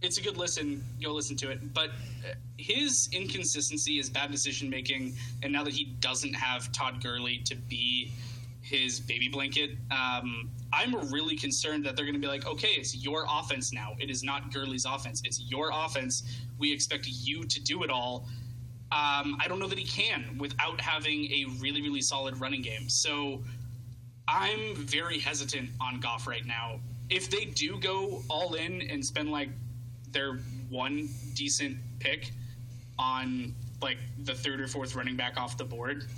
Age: 20-39